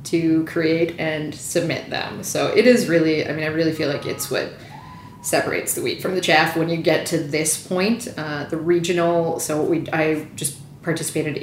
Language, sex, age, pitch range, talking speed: English, female, 30-49, 155-175 Hz, 200 wpm